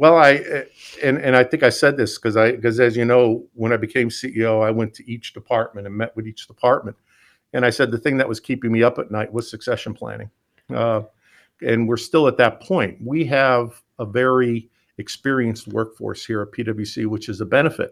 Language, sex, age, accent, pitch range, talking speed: English, male, 50-69, American, 110-125 Hz, 215 wpm